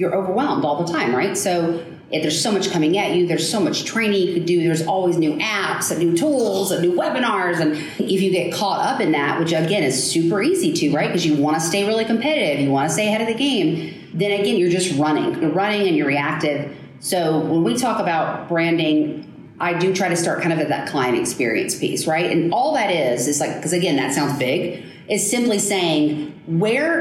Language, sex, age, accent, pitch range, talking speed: English, female, 40-59, American, 160-210 Hz, 235 wpm